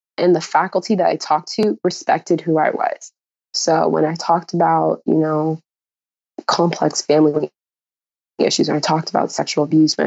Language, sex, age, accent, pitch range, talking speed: English, female, 20-39, American, 160-195 Hz, 165 wpm